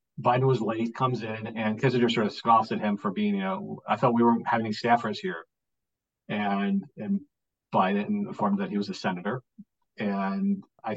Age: 50-69